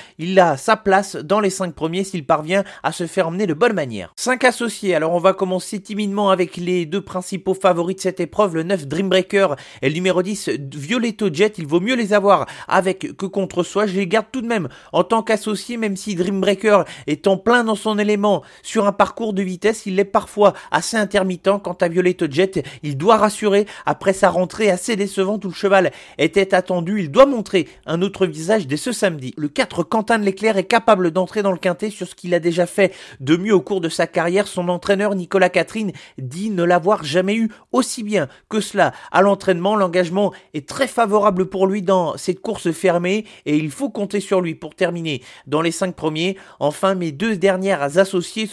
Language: French